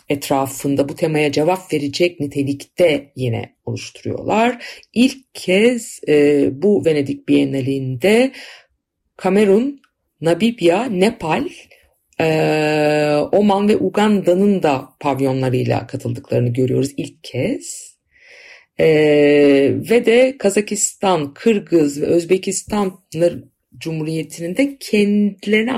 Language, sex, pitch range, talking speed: Turkish, female, 140-205 Hz, 80 wpm